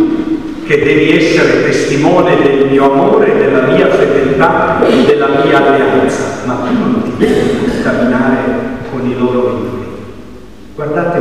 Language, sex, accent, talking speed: Italian, male, native, 120 wpm